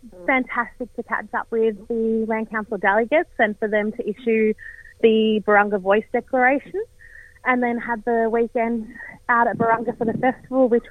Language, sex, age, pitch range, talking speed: English, female, 30-49, 215-255 Hz, 165 wpm